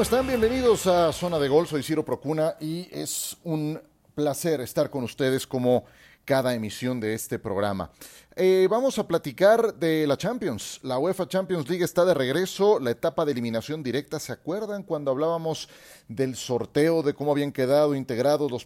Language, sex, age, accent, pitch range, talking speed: Spanish, male, 30-49, Mexican, 120-160 Hz, 175 wpm